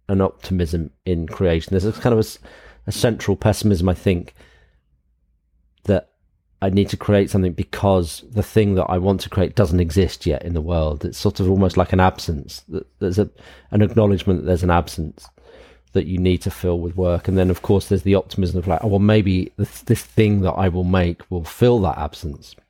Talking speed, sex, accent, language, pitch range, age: 205 wpm, male, British, English, 85-100 Hz, 40-59